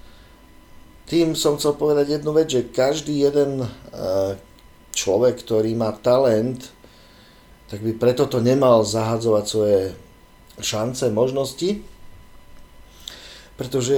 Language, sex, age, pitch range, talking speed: Slovak, male, 50-69, 105-130 Hz, 100 wpm